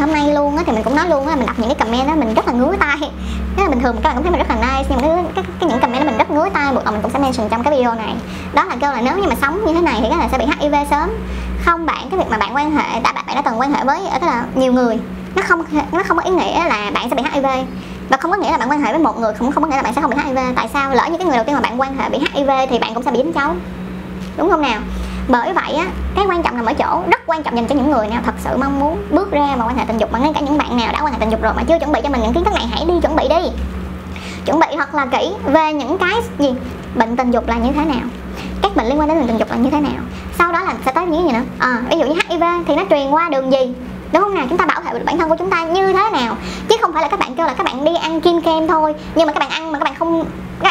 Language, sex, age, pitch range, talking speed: Vietnamese, male, 20-39, 260-330 Hz, 340 wpm